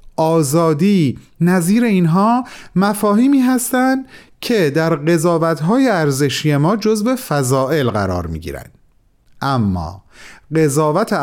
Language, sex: Persian, male